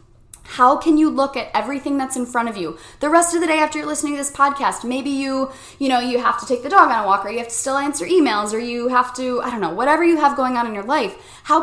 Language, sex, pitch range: English, female, 225-285 Hz